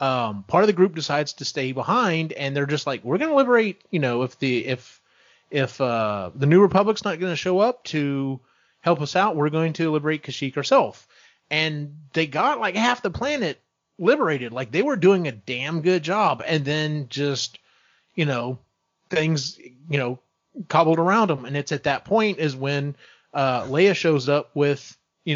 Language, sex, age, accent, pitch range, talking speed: English, male, 30-49, American, 135-165 Hz, 195 wpm